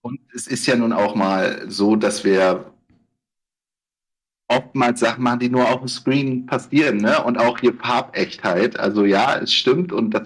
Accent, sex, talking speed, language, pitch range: German, male, 175 wpm, German, 115-140 Hz